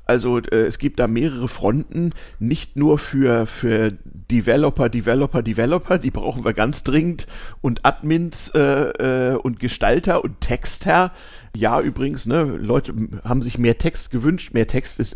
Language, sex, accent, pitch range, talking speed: German, male, German, 120-145 Hz, 150 wpm